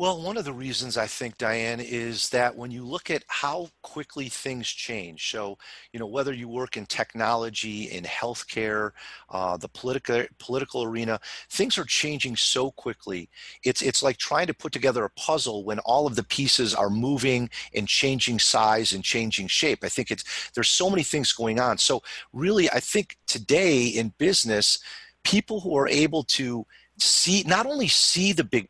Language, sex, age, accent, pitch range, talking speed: English, male, 40-59, American, 115-165 Hz, 180 wpm